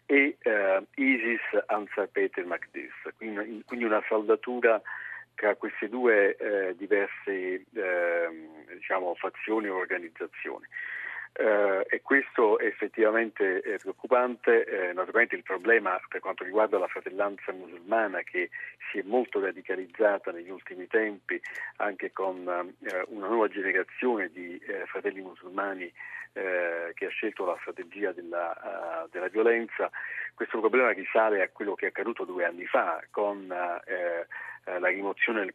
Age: 50-69